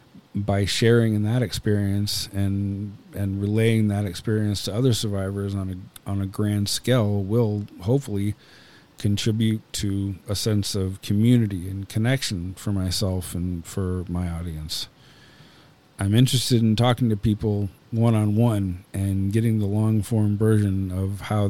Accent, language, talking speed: American, English, 135 wpm